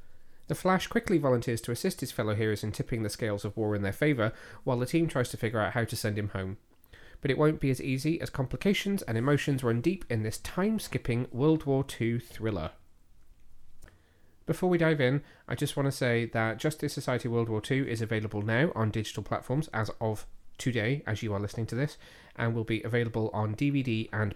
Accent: British